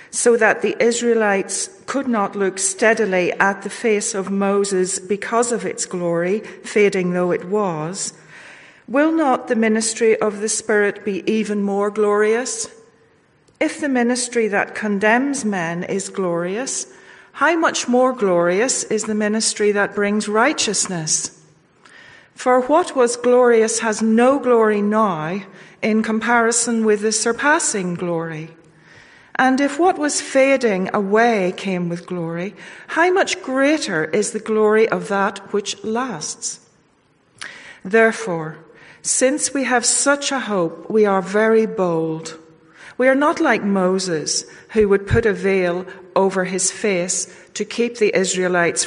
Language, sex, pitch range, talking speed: English, female, 185-230 Hz, 135 wpm